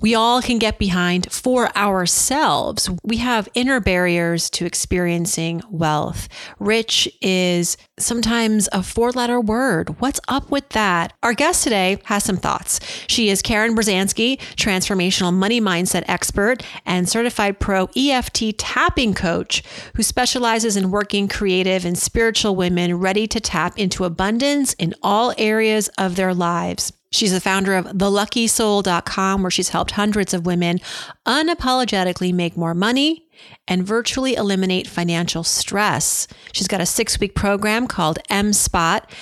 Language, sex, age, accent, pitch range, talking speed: English, female, 40-59, American, 180-225 Hz, 140 wpm